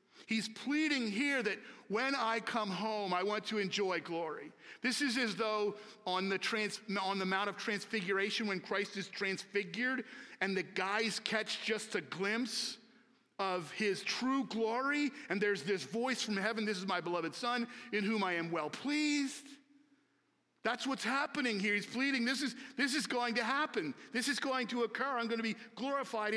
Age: 50-69